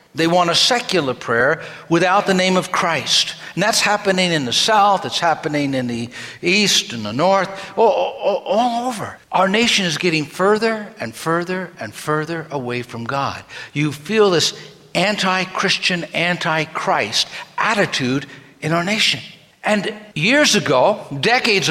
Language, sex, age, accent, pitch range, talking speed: English, male, 60-79, American, 155-210 Hz, 145 wpm